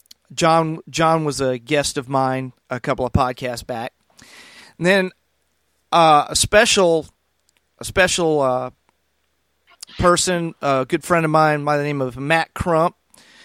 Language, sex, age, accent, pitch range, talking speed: English, male, 40-59, American, 135-175 Hz, 145 wpm